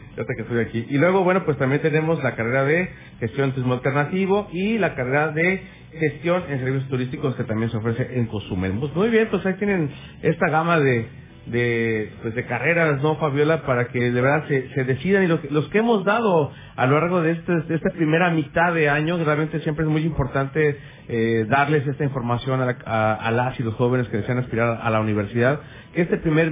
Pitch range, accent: 125-160 Hz, Mexican